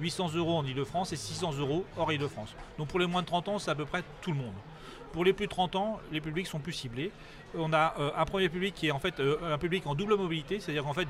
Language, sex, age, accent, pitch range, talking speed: French, male, 40-59, French, 140-175 Hz, 285 wpm